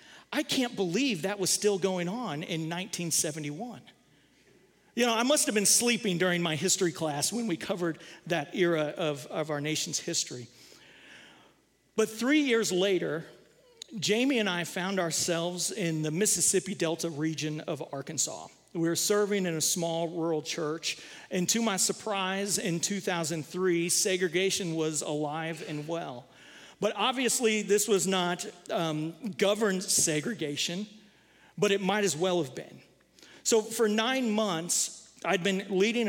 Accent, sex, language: American, male, English